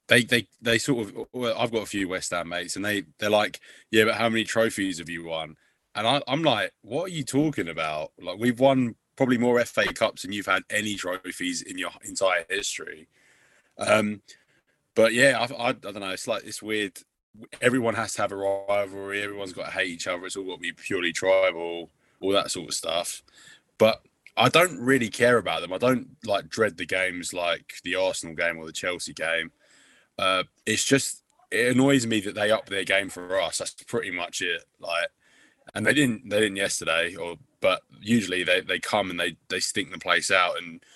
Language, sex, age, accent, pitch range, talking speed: English, male, 20-39, British, 90-115 Hz, 210 wpm